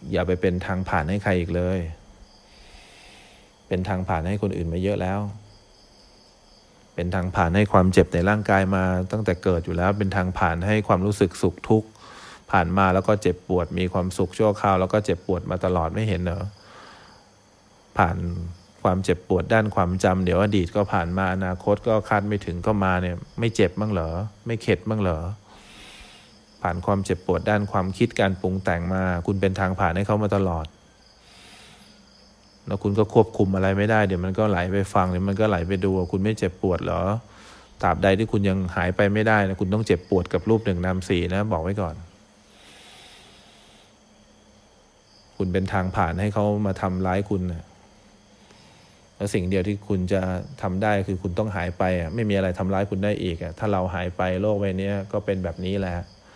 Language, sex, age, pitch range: English, male, 20-39, 90-105 Hz